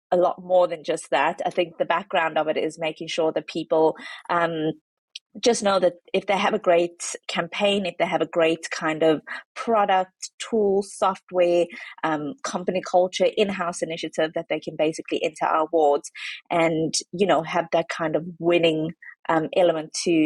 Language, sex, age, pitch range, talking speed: English, female, 20-39, 155-185 Hz, 180 wpm